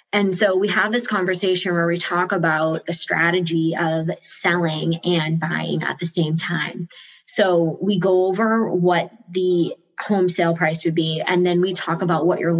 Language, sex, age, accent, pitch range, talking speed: English, female, 20-39, American, 165-185 Hz, 180 wpm